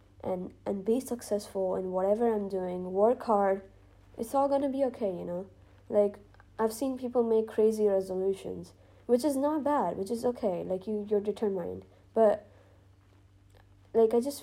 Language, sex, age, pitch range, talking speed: English, female, 20-39, 175-215 Hz, 160 wpm